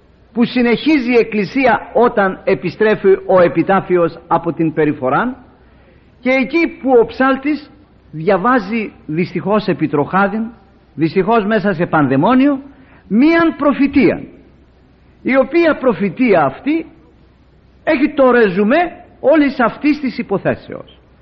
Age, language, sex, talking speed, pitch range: 50-69, Greek, male, 100 wpm, 175-270 Hz